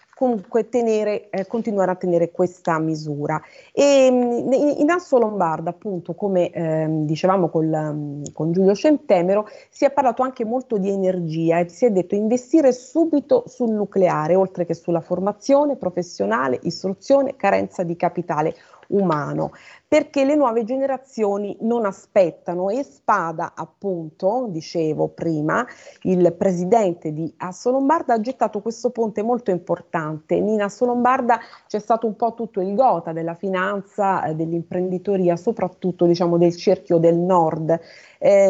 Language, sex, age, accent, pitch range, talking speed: Italian, female, 30-49, native, 175-240 Hz, 135 wpm